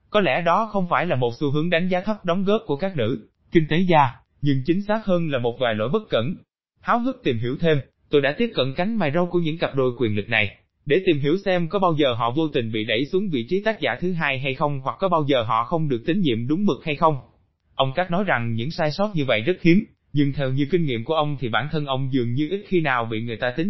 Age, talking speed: 20-39, 290 wpm